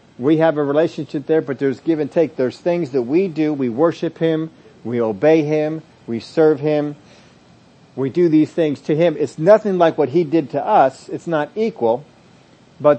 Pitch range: 130-160 Hz